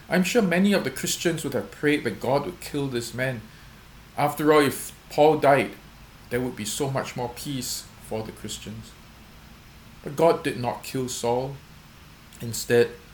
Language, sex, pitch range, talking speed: English, male, 115-145 Hz, 170 wpm